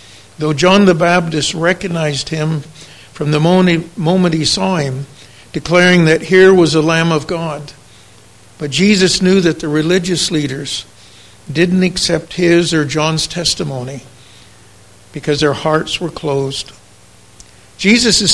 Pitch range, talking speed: 140-175 Hz, 130 wpm